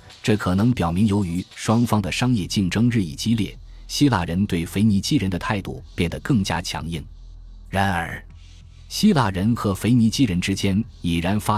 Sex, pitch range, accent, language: male, 85-115 Hz, native, Chinese